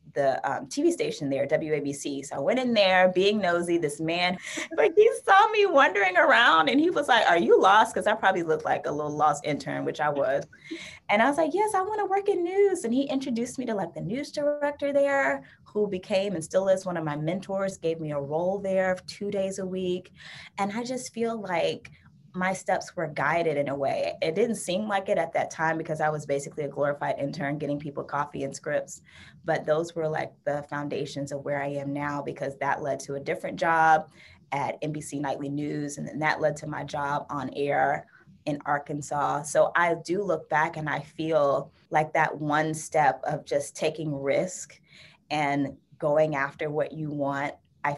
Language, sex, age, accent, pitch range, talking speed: English, female, 20-39, American, 145-190 Hz, 210 wpm